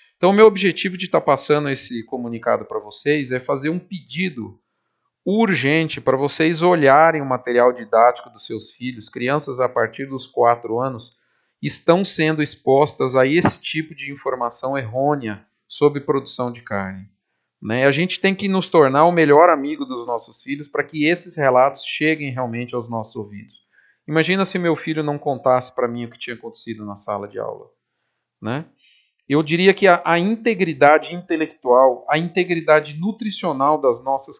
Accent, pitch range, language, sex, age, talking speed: Brazilian, 125-165 Hz, Portuguese, male, 40-59, 165 wpm